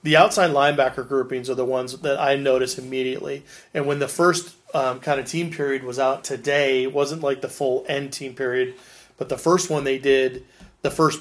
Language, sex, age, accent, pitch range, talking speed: English, male, 30-49, American, 135-160 Hz, 205 wpm